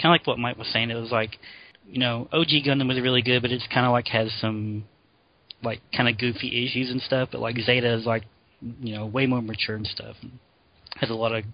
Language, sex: English, male